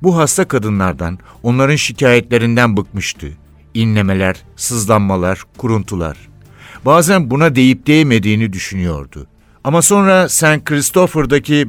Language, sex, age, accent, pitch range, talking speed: Turkish, male, 60-79, native, 110-145 Hz, 90 wpm